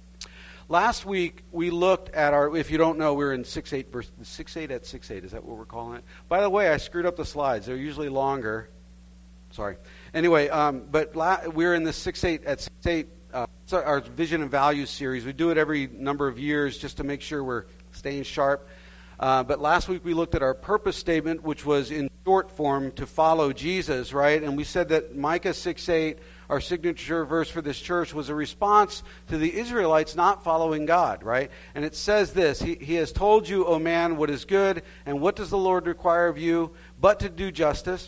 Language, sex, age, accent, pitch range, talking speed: English, male, 50-69, American, 120-170 Hz, 215 wpm